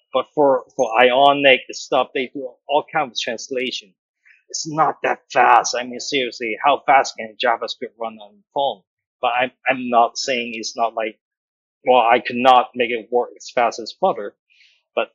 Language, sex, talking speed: English, male, 180 wpm